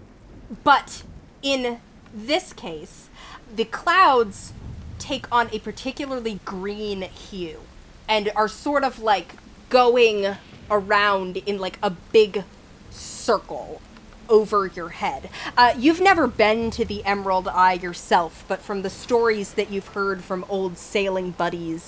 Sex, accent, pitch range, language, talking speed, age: female, American, 185-225 Hz, English, 130 wpm, 20-39